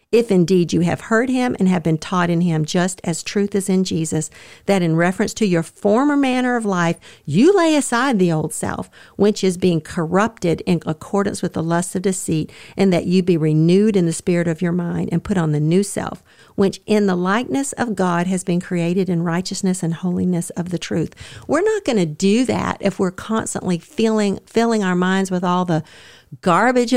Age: 50-69